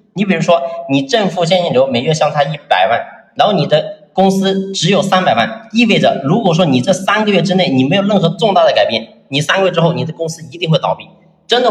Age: 30-49